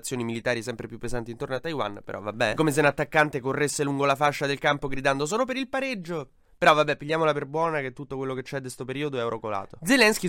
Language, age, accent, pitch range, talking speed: Italian, 20-39, native, 115-155 Hz, 235 wpm